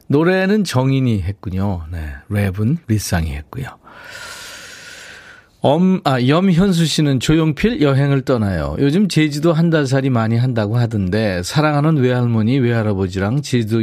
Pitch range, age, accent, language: 105-155 Hz, 40-59, native, Korean